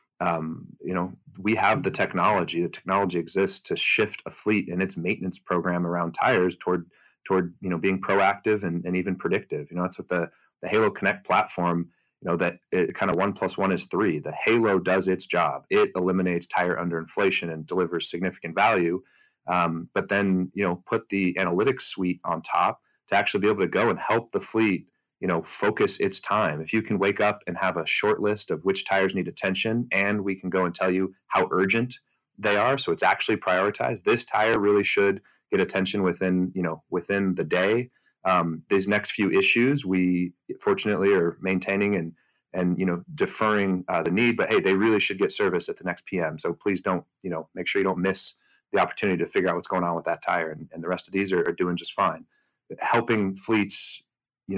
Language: English